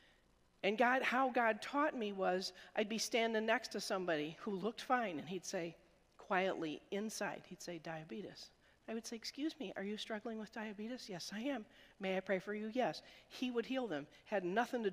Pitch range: 170-220 Hz